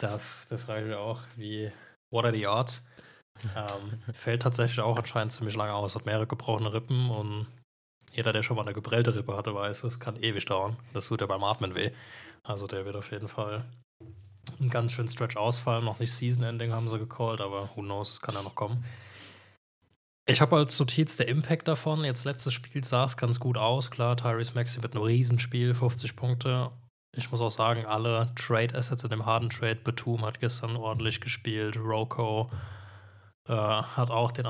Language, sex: German, male